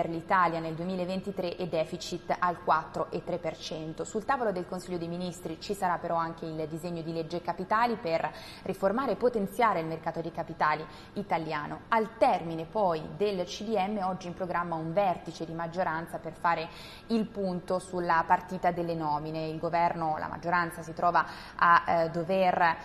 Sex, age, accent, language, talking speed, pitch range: female, 20-39, native, Italian, 160 wpm, 165-185 Hz